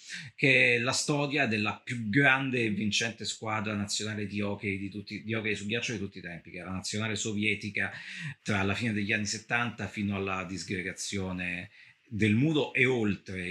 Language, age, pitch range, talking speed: Italian, 40-59, 100-135 Hz, 180 wpm